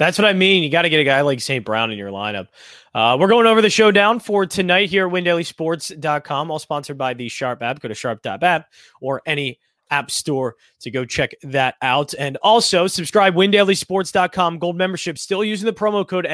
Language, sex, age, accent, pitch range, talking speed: English, male, 20-39, American, 130-180 Hz, 215 wpm